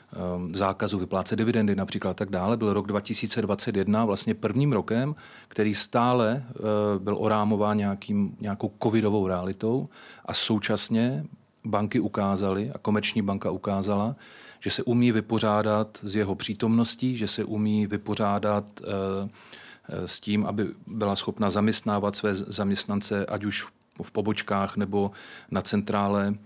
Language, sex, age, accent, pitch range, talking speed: Czech, male, 40-59, native, 100-110 Hz, 120 wpm